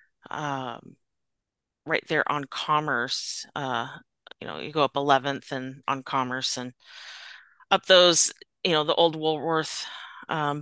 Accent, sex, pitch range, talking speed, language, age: American, female, 135-165 Hz, 135 wpm, English, 30-49